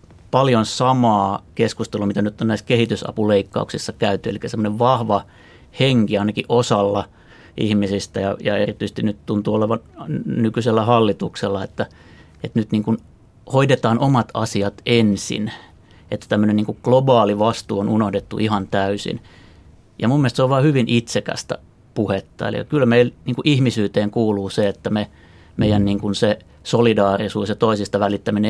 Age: 30-49